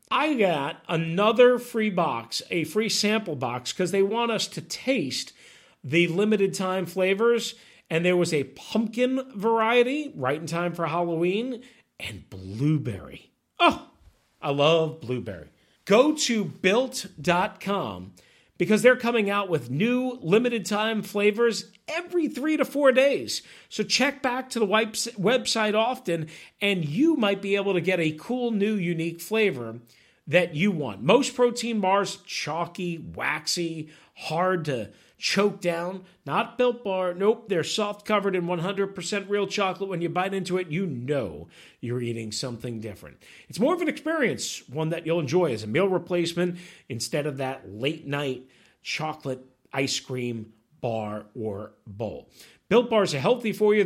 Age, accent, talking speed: 40-59, American, 150 wpm